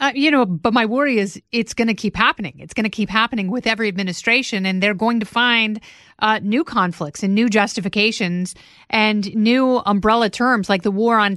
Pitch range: 205-245 Hz